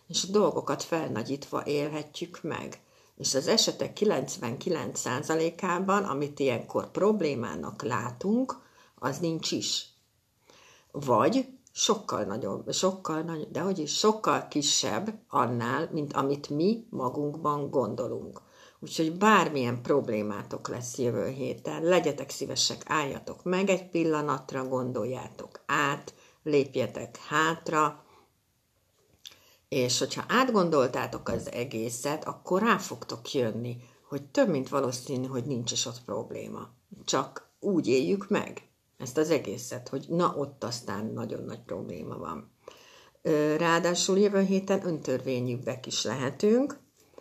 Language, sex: Hungarian, female